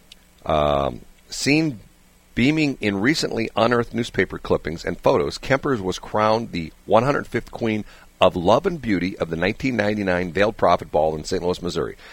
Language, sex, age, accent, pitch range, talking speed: English, male, 50-69, American, 80-115 Hz, 150 wpm